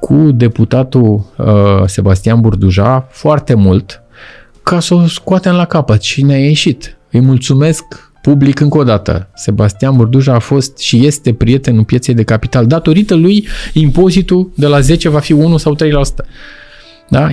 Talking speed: 160 wpm